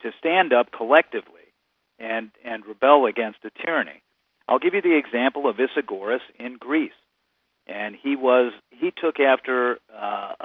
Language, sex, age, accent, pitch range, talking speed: English, male, 50-69, American, 115-150 Hz, 150 wpm